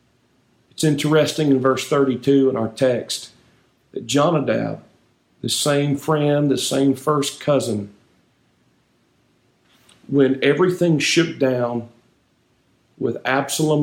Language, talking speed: English, 100 wpm